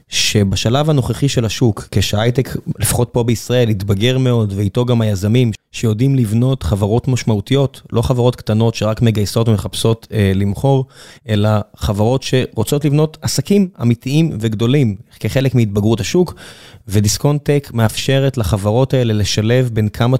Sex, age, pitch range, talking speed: male, 20-39, 110-135 Hz, 130 wpm